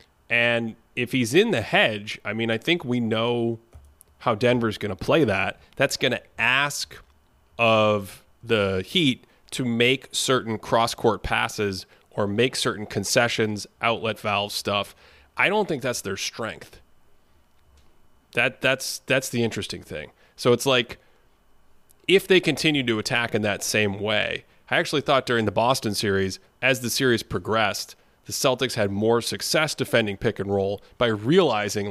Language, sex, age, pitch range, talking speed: English, male, 30-49, 105-125 Hz, 160 wpm